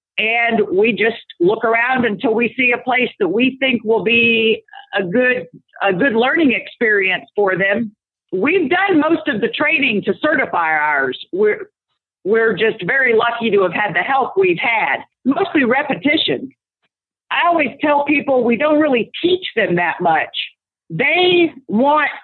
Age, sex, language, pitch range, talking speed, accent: 50-69, female, English, 215-280 Hz, 160 wpm, American